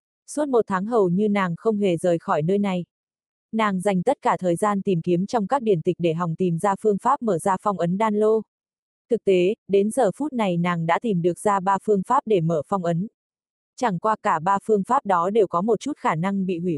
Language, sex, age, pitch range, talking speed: Vietnamese, female, 20-39, 180-220 Hz, 245 wpm